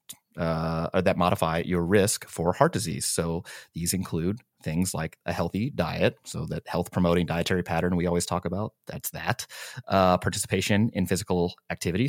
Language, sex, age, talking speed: English, male, 30-49, 165 wpm